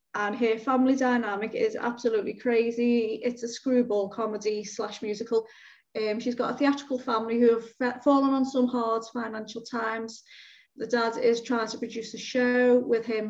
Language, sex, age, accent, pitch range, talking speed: English, female, 30-49, British, 210-240 Hz, 165 wpm